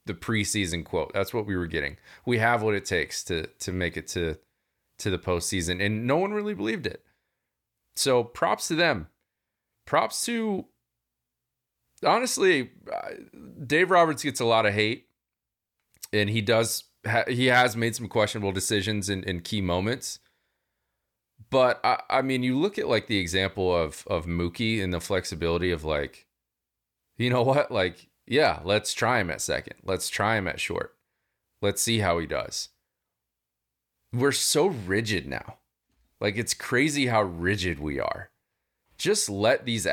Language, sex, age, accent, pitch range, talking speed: English, male, 30-49, American, 85-115 Hz, 160 wpm